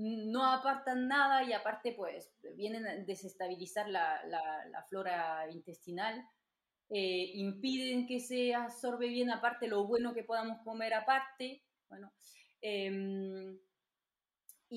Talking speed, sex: 120 wpm, female